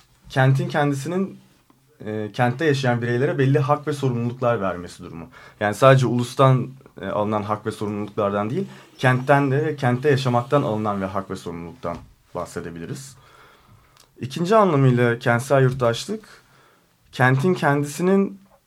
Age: 30-49